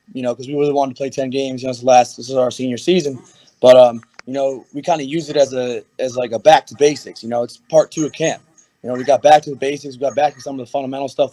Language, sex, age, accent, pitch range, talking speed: English, male, 20-39, American, 120-140 Hz, 325 wpm